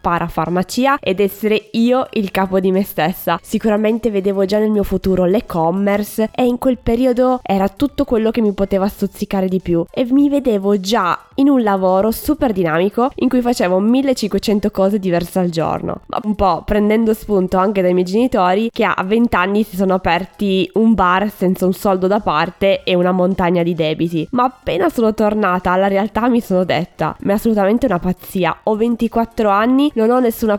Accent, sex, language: native, female, Italian